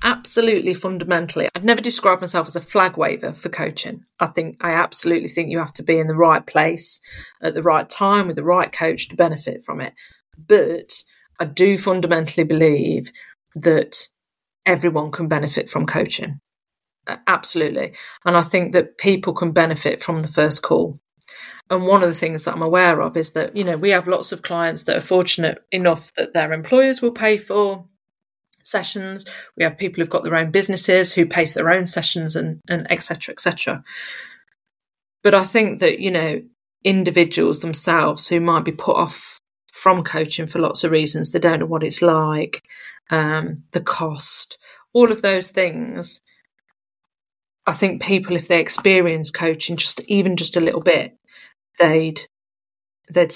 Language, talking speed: English, 175 wpm